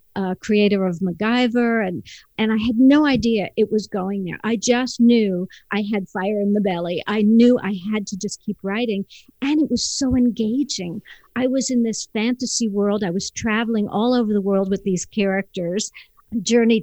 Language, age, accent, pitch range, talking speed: English, 50-69, American, 195-235 Hz, 190 wpm